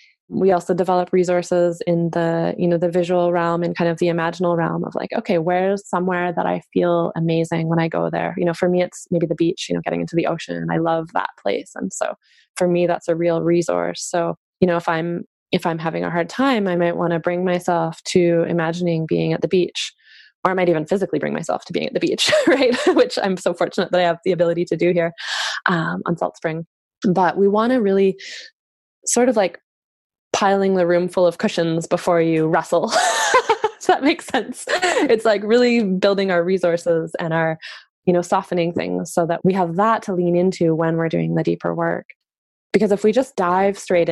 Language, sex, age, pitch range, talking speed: English, female, 20-39, 165-190 Hz, 220 wpm